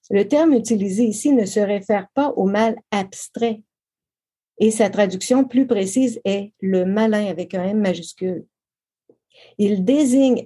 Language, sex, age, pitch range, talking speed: French, female, 50-69, 190-245 Hz, 145 wpm